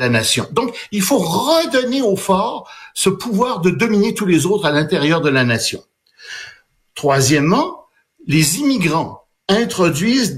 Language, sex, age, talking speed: French, male, 60-79, 135 wpm